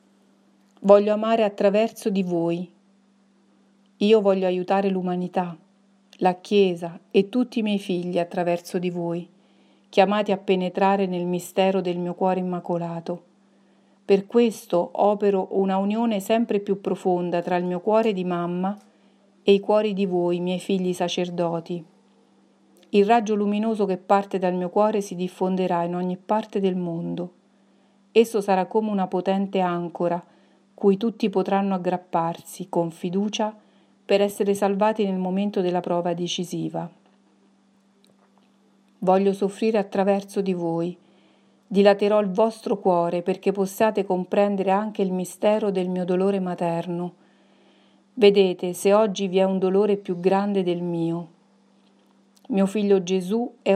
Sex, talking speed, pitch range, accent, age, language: female, 135 wpm, 180-205 Hz, native, 40-59, Italian